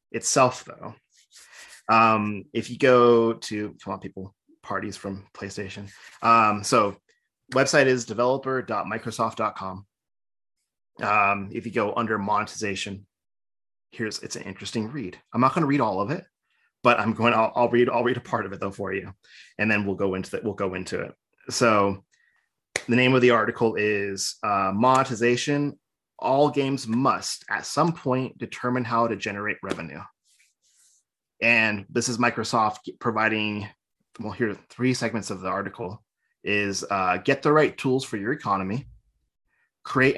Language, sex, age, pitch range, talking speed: English, male, 30-49, 100-120 Hz, 155 wpm